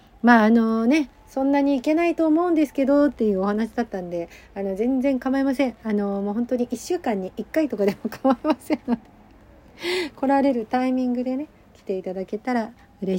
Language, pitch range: Japanese, 195-275 Hz